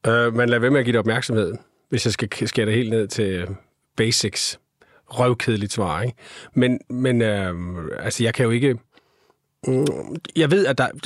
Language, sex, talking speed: Danish, male, 190 wpm